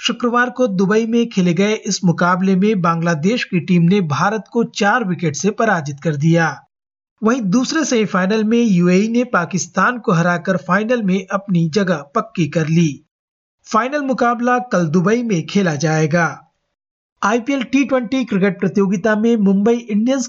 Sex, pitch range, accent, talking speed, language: male, 175-230 Hz, native, 150 wpm, Hindi